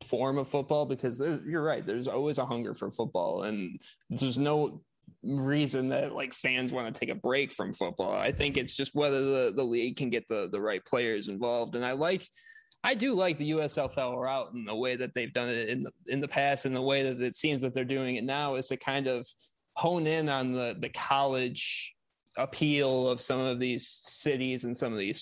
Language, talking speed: English, 220 wpm